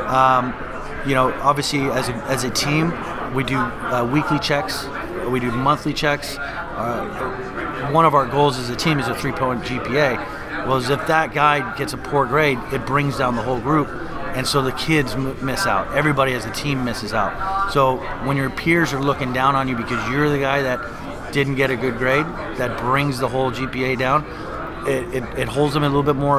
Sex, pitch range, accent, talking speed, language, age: male, 130-150 Hz, American, 210 wpm, English, 30-49